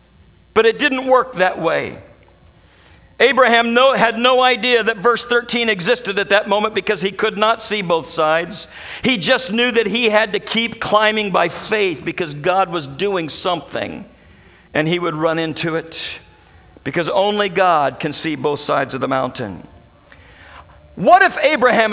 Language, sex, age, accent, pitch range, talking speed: English, male, 50-69, American, 160-230 Hz, 165 wpm